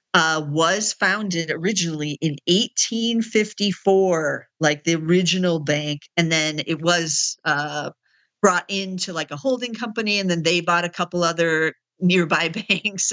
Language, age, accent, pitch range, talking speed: English, 50-69, American, 155-185 Hz, 135 wpm